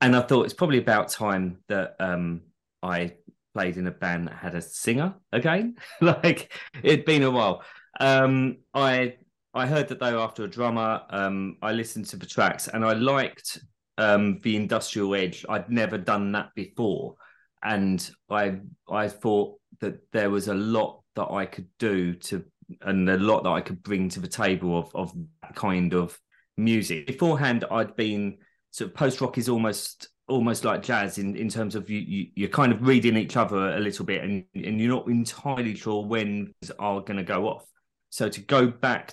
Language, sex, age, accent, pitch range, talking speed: English, male, 30-49, British, 95-125 Hz, 190 wpm